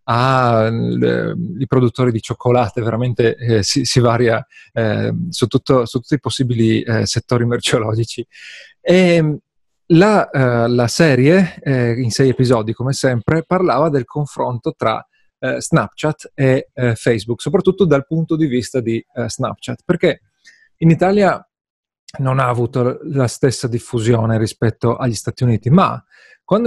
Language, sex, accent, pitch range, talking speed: Italian, male, native, 120-160 Hz, 135 wpm